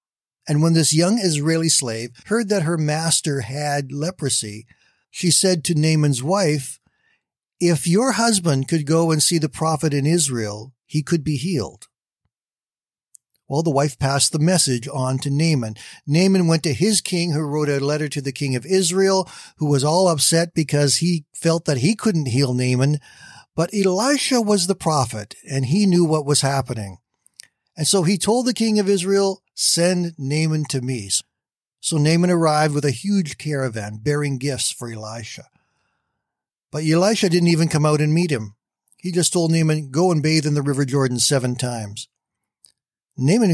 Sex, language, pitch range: male, English, 135-175 Hz